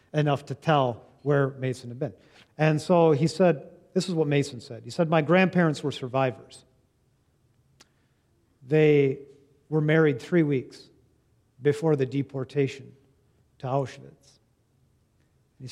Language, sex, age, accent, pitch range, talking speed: English, male, 40-59, American, 130-155 Hz, 125 wpm